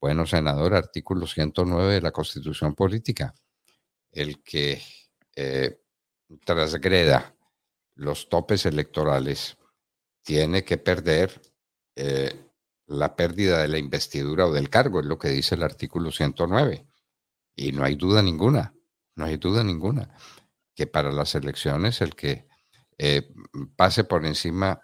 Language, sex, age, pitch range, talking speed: Spanish, male, 50-69, 75-95 Hz, 130 wpm